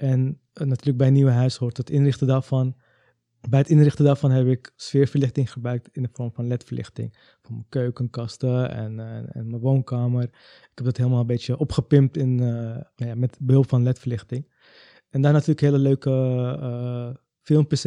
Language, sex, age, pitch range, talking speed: Dutch, male, 20-39, 120-135 Hz, 180 wpm